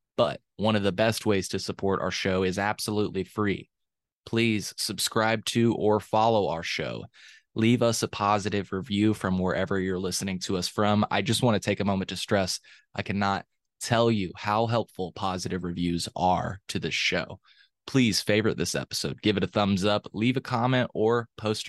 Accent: American